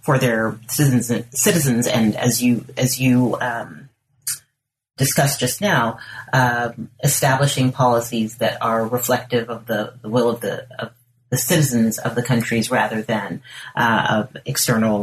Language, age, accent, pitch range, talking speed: English, 30-49, American, 120-140 Hz, 145 wpm